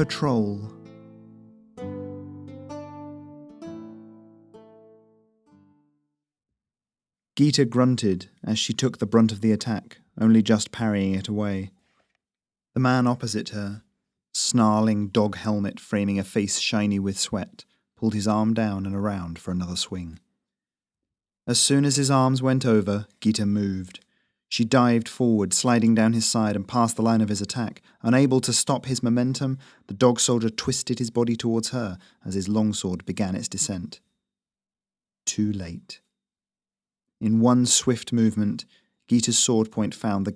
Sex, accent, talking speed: male, British, 135 wpm